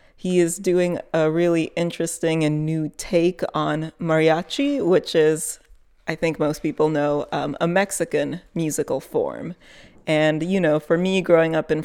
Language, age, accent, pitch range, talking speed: English, 30-49, American, 155-175 Hz, 155 wpm